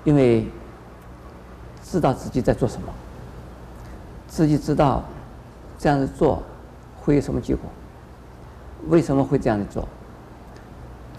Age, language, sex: 50-69, Chinese, male